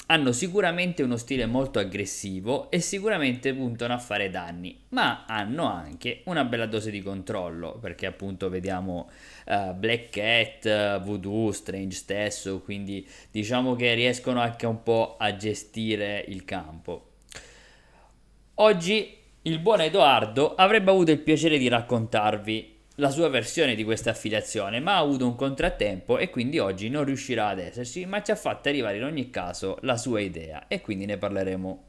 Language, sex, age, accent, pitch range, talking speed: Italian, male, 20-39, native, 95-120 Hz, 155 wpm